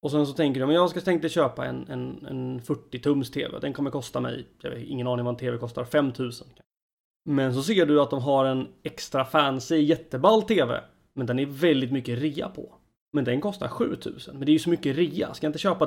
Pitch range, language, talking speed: 125-155 Hz, Swedish, 235 wpm